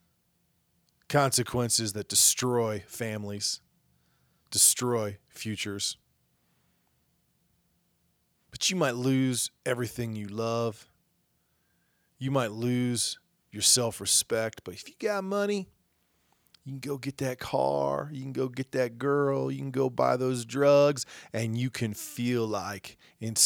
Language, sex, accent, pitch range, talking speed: English, male, American, 95-130 Hz, 120 wpm